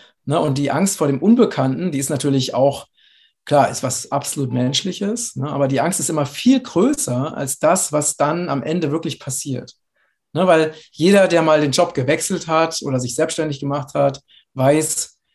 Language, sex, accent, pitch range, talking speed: German, male, German, 135-165 Hz, 185 wpm